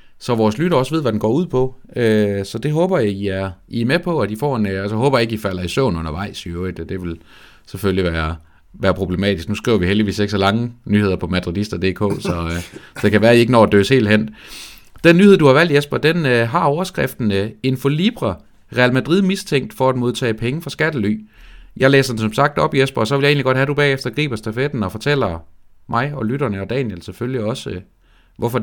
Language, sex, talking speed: Danish, male, 230 wpm